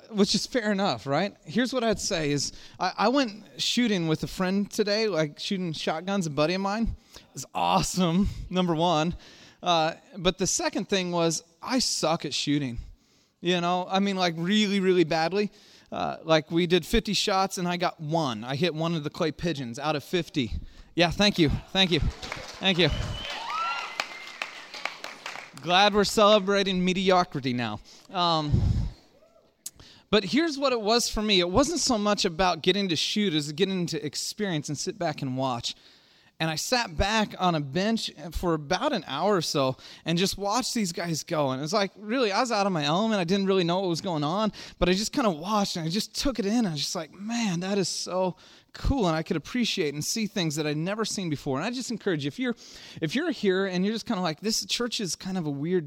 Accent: American